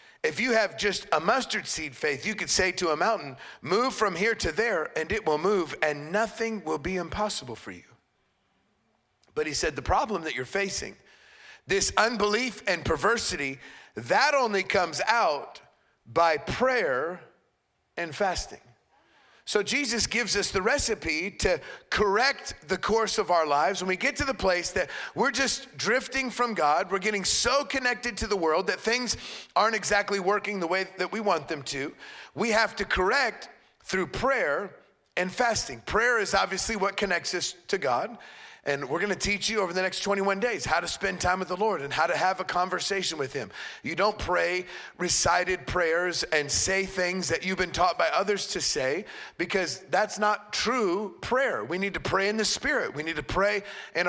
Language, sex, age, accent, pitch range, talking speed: English, male, 40-59, American, 180-225 Hz, 185 wpm